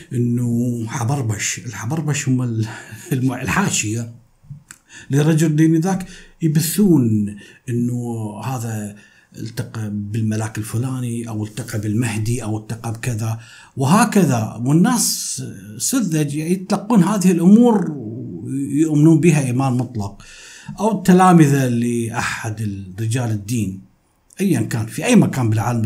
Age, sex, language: 50-69, male, Arabic